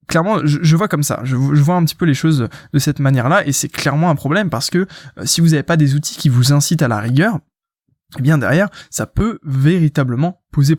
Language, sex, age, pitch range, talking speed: French, male, 20-39, 135-160 Hz, 230 wpm